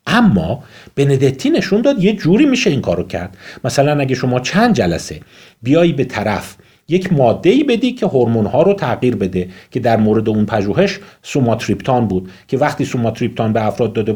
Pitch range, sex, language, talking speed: 95-165 Hz, male, Persian, 175 wpm